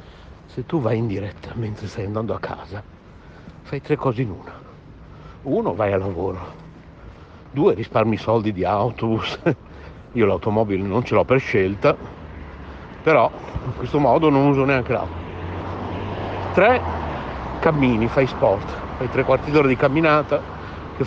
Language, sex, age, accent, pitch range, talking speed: Italian, male, 60-79, native, 100-145 Hz, 145 wpm